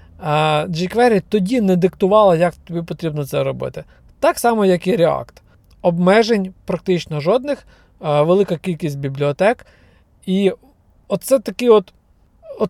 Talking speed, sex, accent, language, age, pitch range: 110 wpm, male, native, Ukrainian, 40-59, 165-215 Hz